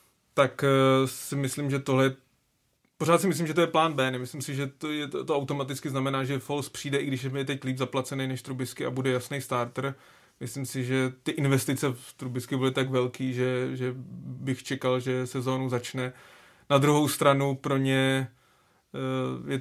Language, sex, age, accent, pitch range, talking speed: Czech, male, 30-49, native, 130-145 Hz, 185 wpm